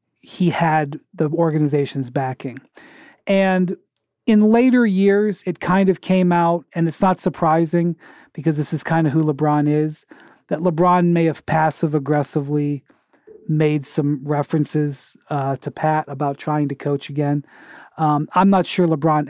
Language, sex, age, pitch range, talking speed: English, male, 40-59, 150-180 Hz, 145 wpm